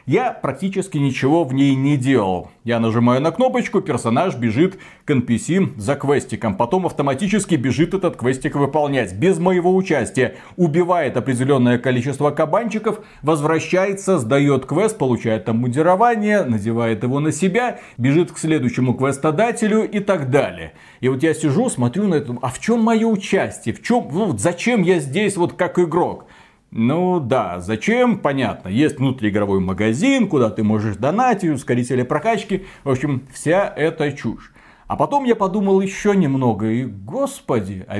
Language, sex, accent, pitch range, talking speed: Russian, male, native, 125-190 Hz, 145 wpm